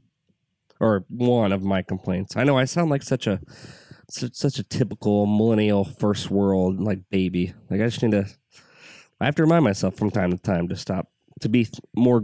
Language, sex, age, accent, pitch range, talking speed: English, male, 20-39, American, 100-130 Hz, 190 wpm